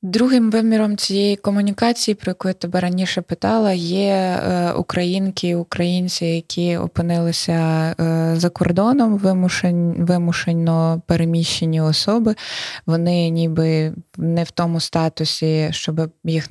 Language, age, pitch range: Ukrainian, 20-39, 155-180 Hz